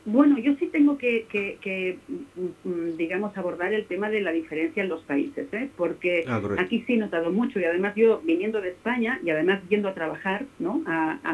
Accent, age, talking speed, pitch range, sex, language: Spanish, 50-69, 200 wpm, 180-250 Hz, female, Spanish